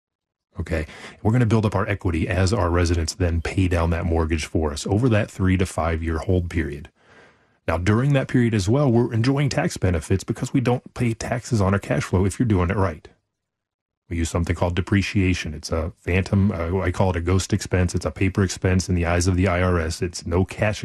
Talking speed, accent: 220 wpm, American